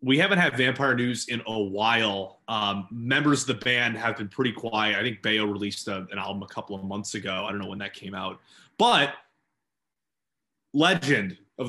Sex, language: male, English